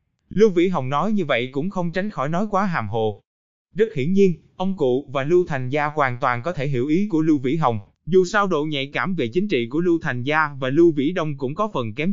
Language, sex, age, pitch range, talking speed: Vietnamese, male, 20-39, 125-180 Hz, 260 wpm